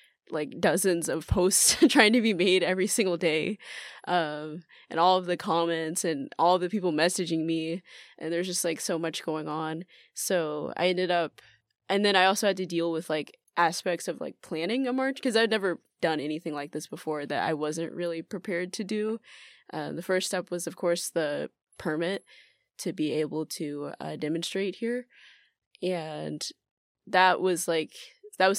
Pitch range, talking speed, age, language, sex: 160-190 Hz, 185 wpm, 20-39, English, female